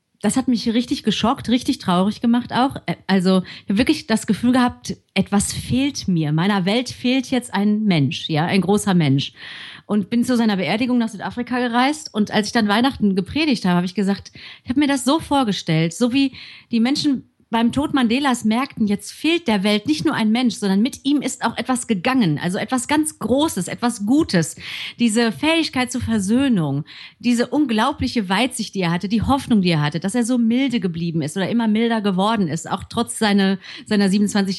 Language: German